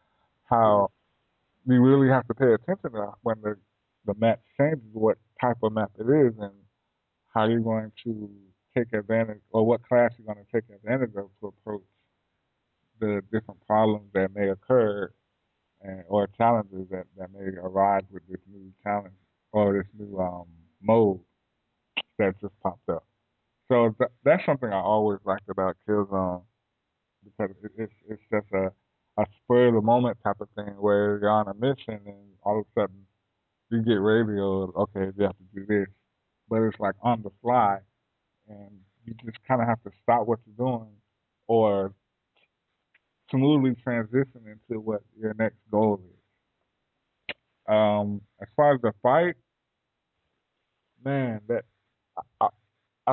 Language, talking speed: English, 150 wpm